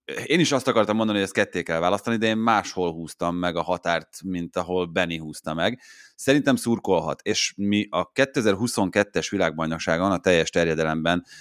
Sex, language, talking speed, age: male, Hungarian, 170 wpm, 30-49